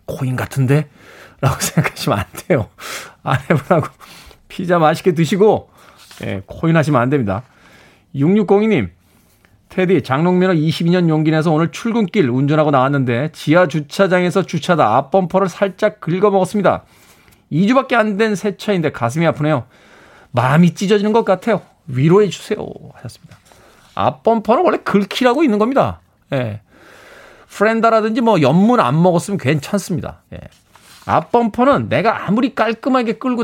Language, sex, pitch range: Korean, male, 140-205 Hz